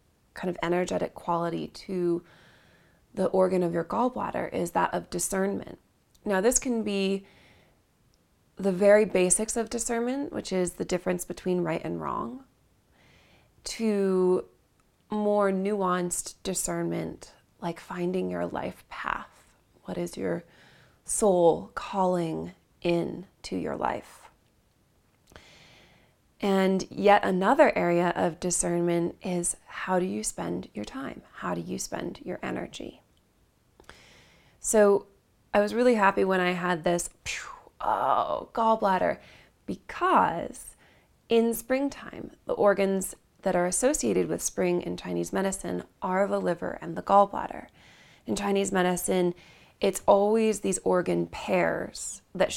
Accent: American